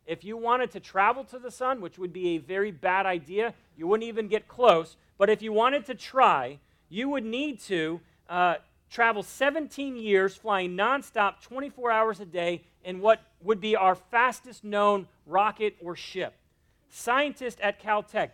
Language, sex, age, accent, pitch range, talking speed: English, male, 40-59, American, 185-235 Hz, 175 wpm